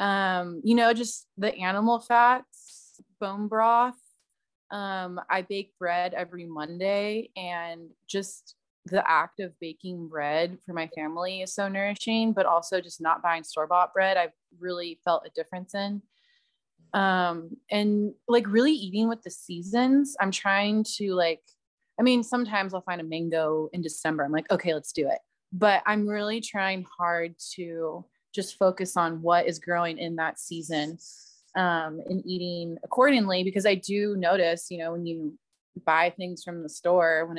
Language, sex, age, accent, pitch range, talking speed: English, female, 20-39, American, 170-205 Hz, 160 wpm